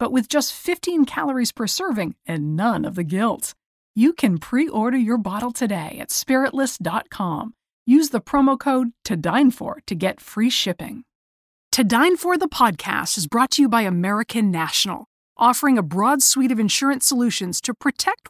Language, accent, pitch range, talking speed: English, American, 185-260 Hz, 175 wpm